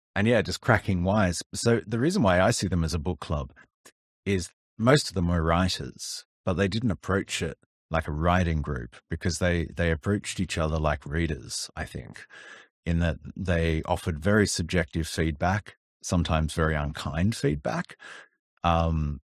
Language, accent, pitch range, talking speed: English, Australian, 80-95 Hz, 165 wpm